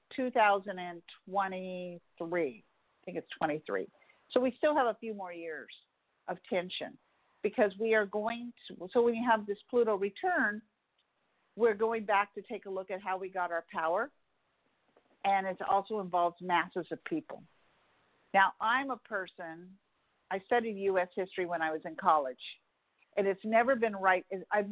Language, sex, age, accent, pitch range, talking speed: English, female, 50-69, American, 180-230 Hz, 165 wpm